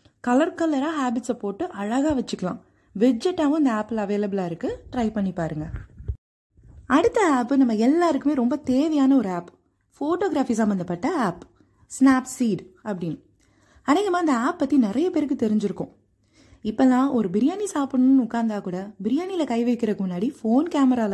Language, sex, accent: Tamil, female, native